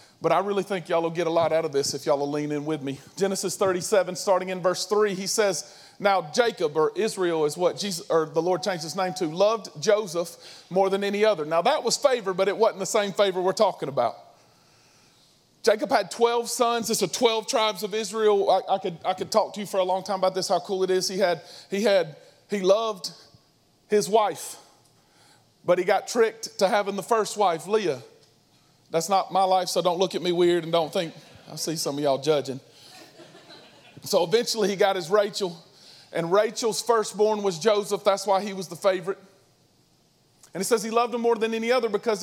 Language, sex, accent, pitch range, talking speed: English, male, American, 180-215 Hz, 215 wpm